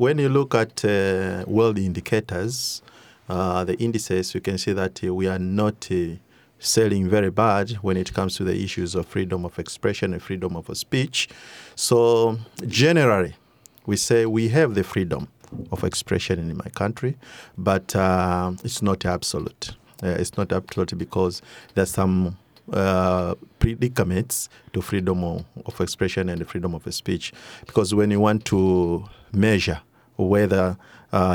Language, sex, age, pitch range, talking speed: English, male, 50-69, 90-110 Hz, 150 wpm